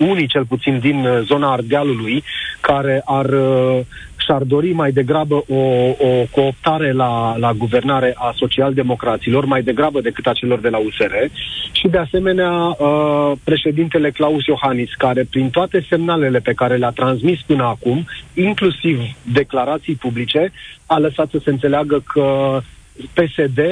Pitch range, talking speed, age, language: 130-160 Hz, 135 wpm, 40-59, Romanian